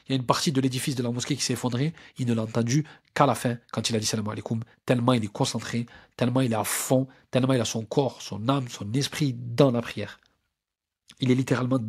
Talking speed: 260 wpm